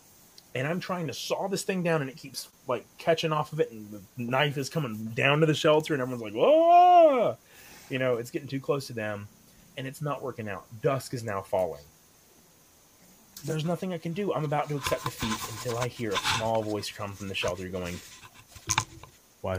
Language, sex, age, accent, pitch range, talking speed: English, male, 30-49, American, 110-155 Hz, 210 wpm